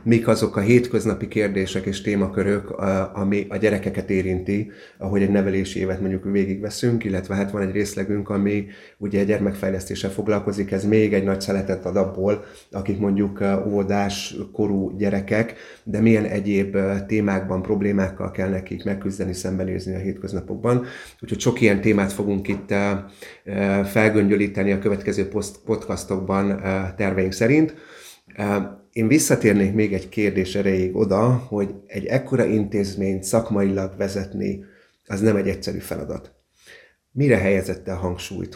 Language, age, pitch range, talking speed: Hungarian, 30-49, 95-105 Hz, 130 wpm